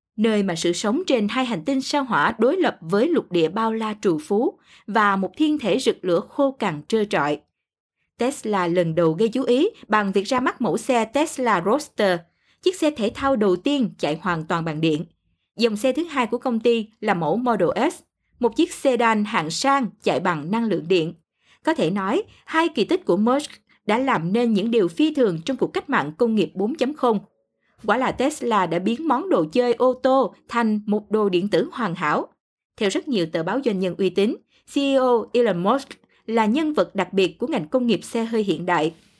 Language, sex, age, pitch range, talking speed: Vietnamese, female, 20-39, 195-265 Hz, 215 wpm